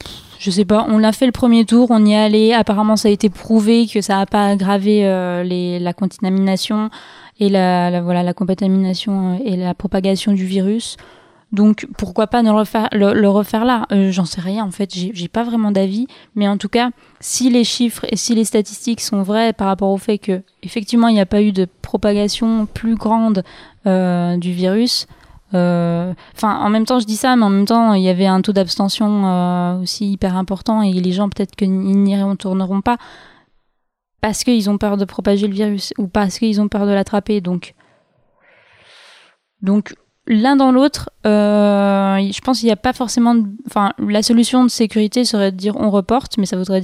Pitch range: 195-225 Hz